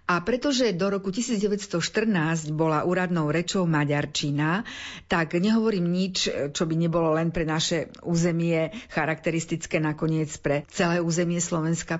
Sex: female